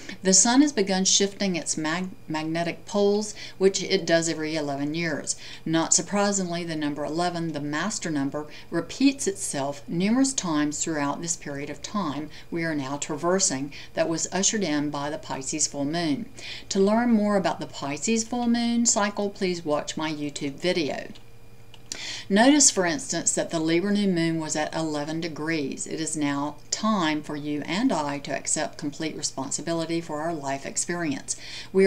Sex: female